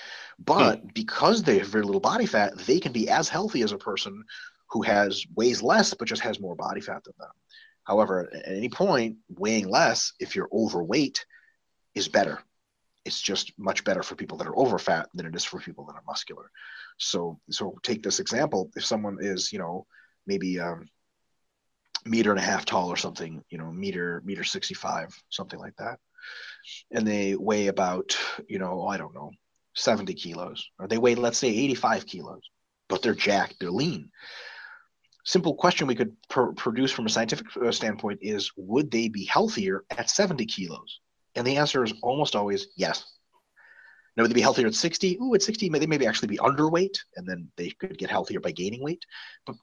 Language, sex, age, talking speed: English, male, 30-49, 190 wpm